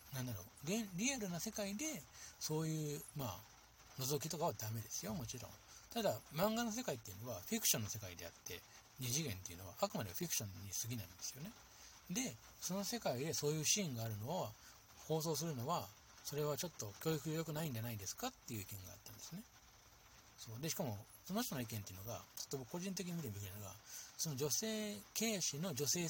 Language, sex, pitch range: Japanese, male, 110-170 Hz